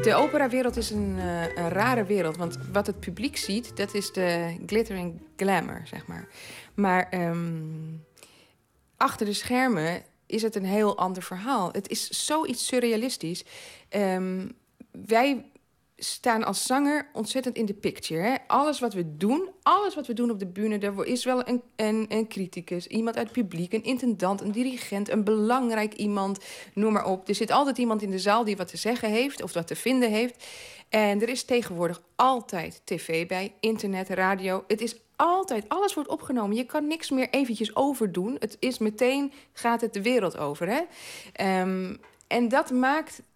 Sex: female